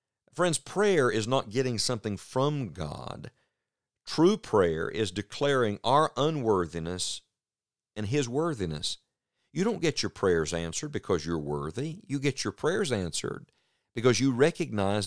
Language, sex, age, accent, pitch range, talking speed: English, male, 50-69, American, 95-140 Hz, 135 wpm